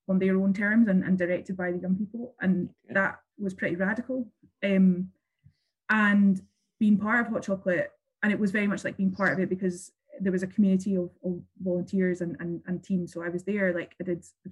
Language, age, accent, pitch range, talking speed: English, 20-39, British, 175-195 Hz, 220 wpm